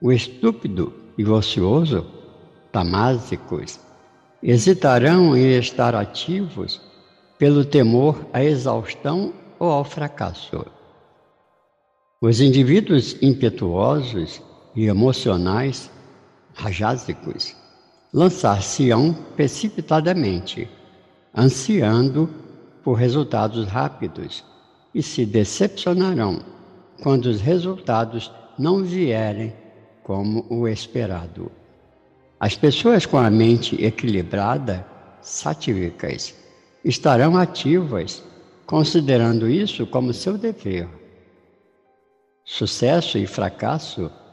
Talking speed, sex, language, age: 75 wpm, male, Portuguese, 60-79